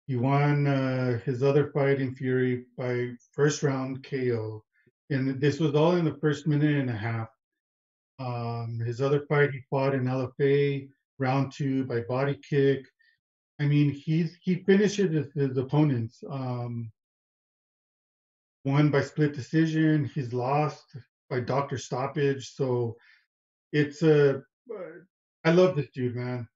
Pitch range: 125-150 Hz